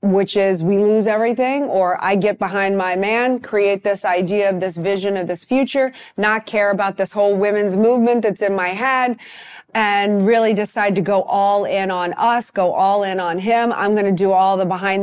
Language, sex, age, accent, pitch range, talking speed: English, female, 30-49, American, 200-265 Hz, 210 wpm